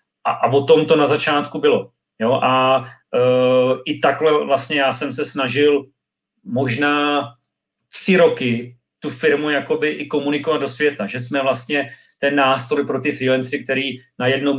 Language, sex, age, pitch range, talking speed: Czech, male, 40-59, 125-145 Hz, 160 wpm